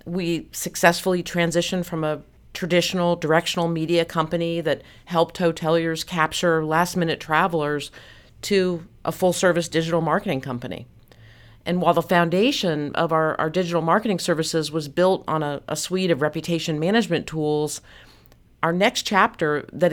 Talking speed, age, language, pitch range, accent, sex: 140 wpm, 40-59, English, 155-175 Hz, American, female